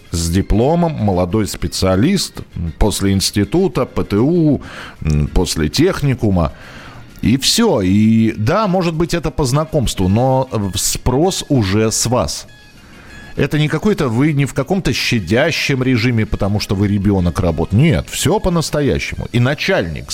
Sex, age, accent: male, 40-59, native